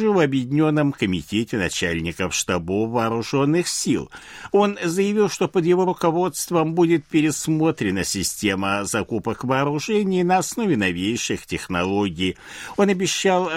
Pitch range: 105-175 Hz